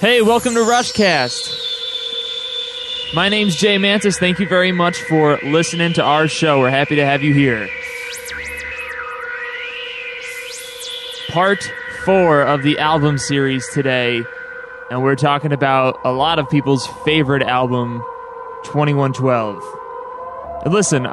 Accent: American